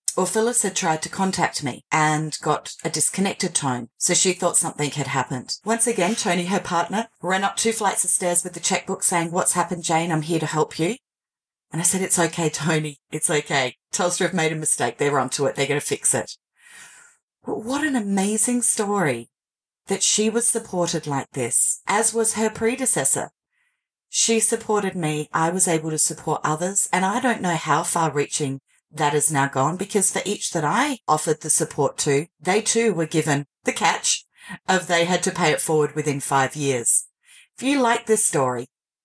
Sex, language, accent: female, English, Australian